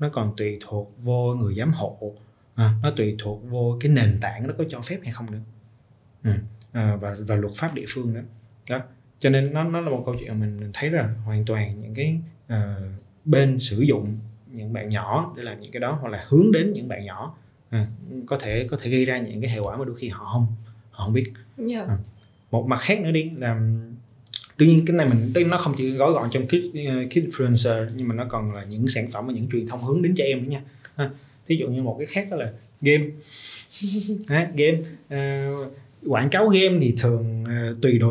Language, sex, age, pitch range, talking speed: Vietnamese, male, 20-39, 110-140 Hz, 230 wpm